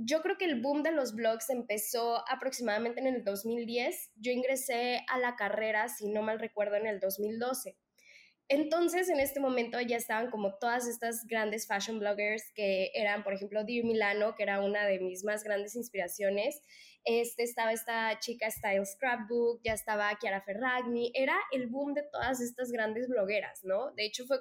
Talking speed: 180 wpm